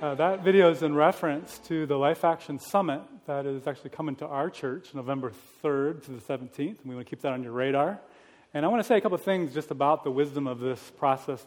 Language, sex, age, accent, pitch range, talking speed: English, male, 30-49, American, 140-175 Hz, 250 wpm